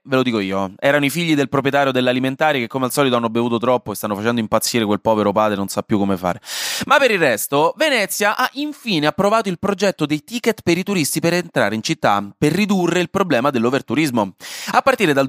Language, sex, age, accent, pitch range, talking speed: Italian, male, 20-39, native, 115-180 Hz, 220 wpm